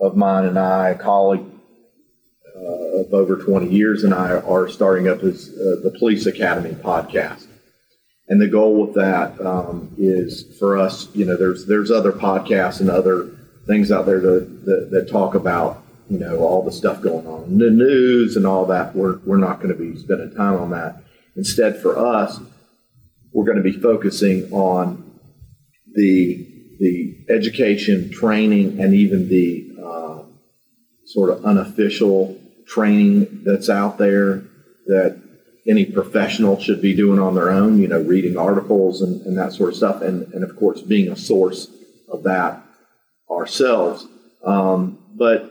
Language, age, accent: English, 40-59, American